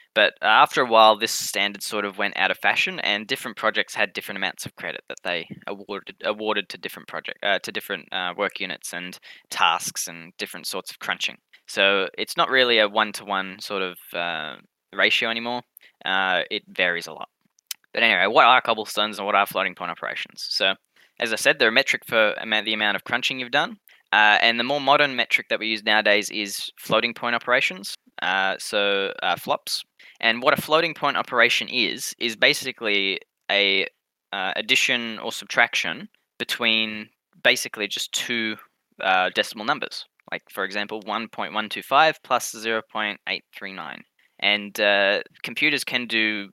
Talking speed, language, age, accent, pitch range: 180 wpm, English, 10-29, Australian, 100-115 Hz